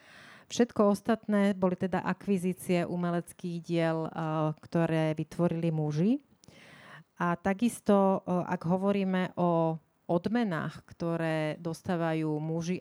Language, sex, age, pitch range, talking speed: Slovak, female, 30-49, 165-185 Hz, 90 wpm